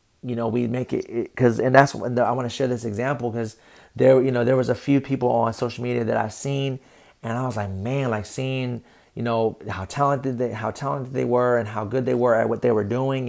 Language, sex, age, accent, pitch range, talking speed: English, male, 30-49, American, 115-135 Hz, 255 wpm